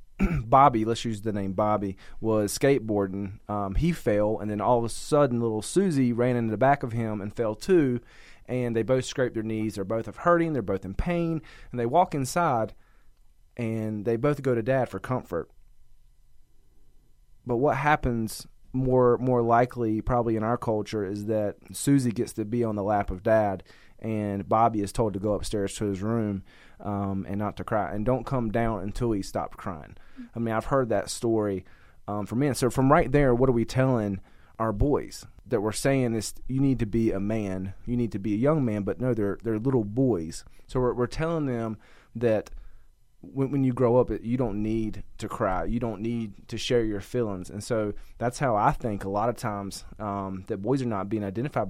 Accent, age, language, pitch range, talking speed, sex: American, 30-49, English, 105-125 Hz, 210 wpm, male